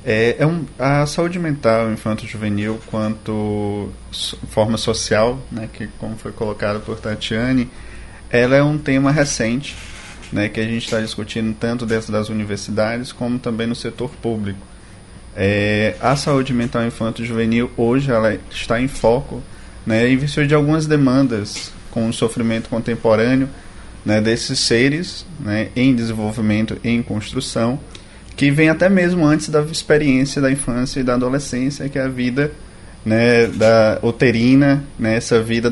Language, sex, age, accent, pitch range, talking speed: Portuguese, male, 20-39, Brazilian, 110-135 Hz, 150 wpm